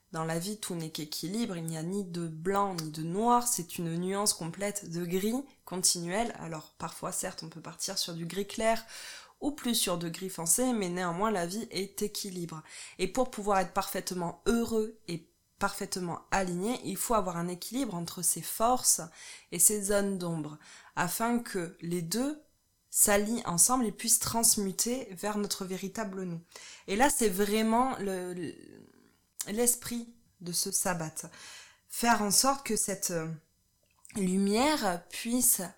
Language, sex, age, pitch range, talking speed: French, female, 20-39, 180-230 Hz, 160 wpm